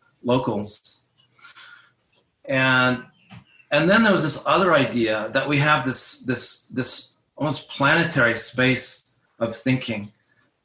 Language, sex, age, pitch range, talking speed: English, male, 30-49, 110-135 Hz, 120 wpm